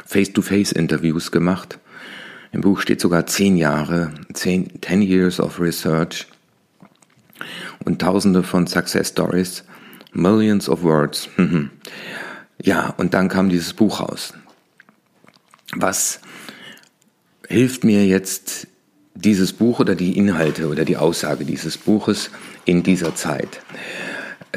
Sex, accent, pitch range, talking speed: male, German, 85-100 Hz, 110 wpm